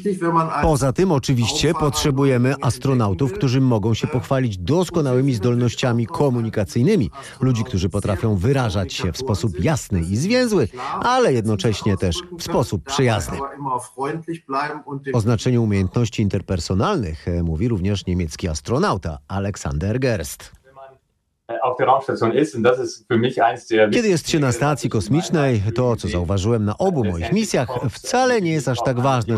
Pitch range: 105-135 Hz